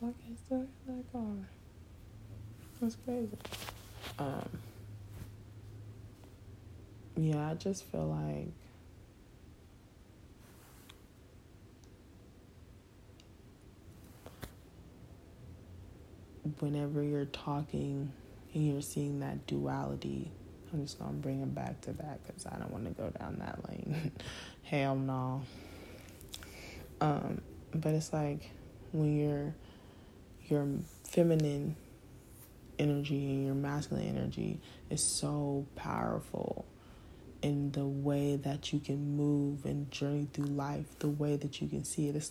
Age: 20-39